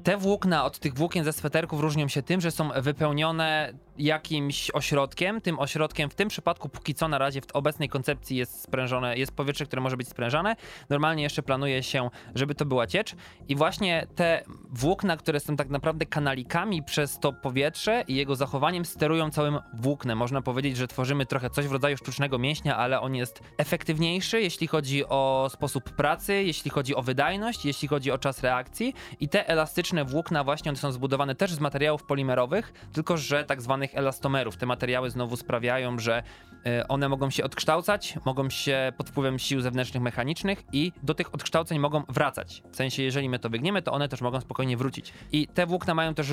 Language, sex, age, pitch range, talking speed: Polish, male, 20-39, 130-155 Hz, 185 wpm